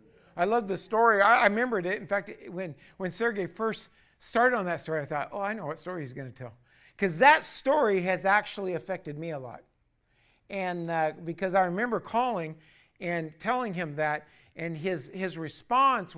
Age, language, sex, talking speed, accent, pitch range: 50-69, English, male, 195 wpm, American, 170-220 Hz